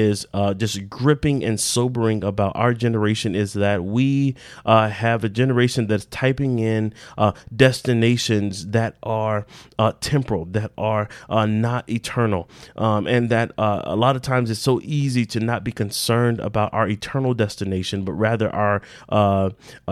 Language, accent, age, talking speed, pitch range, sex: English, American, 30-49, 160 wpm, 105-125 Hz, male